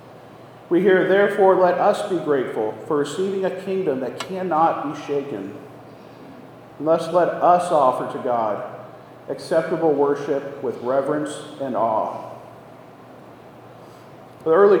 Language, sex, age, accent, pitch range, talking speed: English, male, 40-59, American, 145-190 Hz, 120 wpm